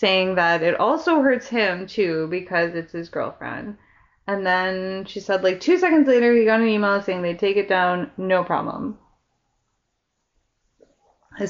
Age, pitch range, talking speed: 20-39, 175-250 Hz, 160 wpm